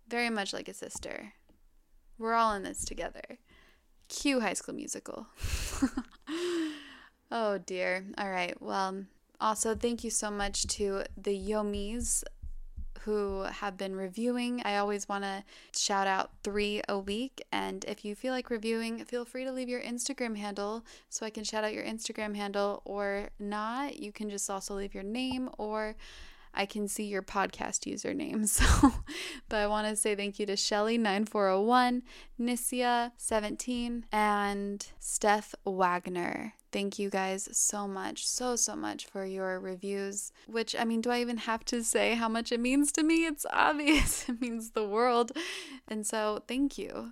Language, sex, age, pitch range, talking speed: English, female, 10-29, 200-245 Hz, 160 wpm